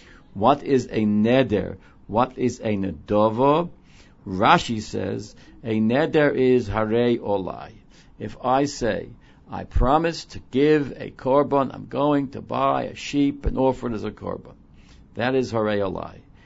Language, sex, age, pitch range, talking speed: English, male, 60-79, 100-130 Hz, 145 wpm